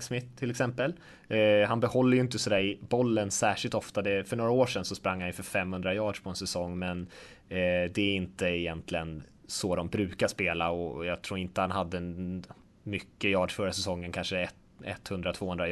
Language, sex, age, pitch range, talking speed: Swedish, male, 20-39, 95-120 Hz, 195 wpm